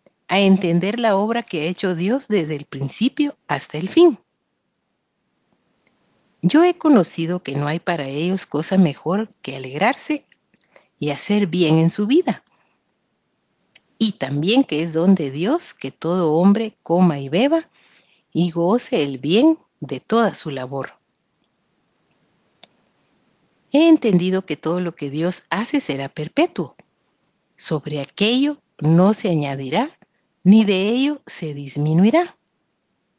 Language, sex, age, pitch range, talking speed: Spanish, female, 40-59, 155-235 Hz, 130 wpm